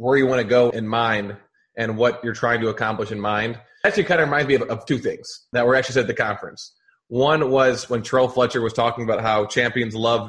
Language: English